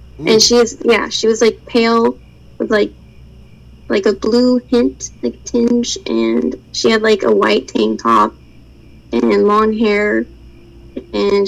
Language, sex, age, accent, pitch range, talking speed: English, female, 10-29, American, 190-250 Hz, 145 wpm